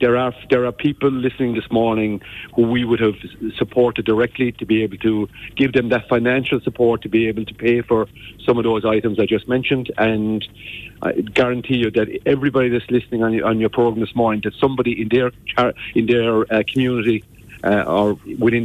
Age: 50-69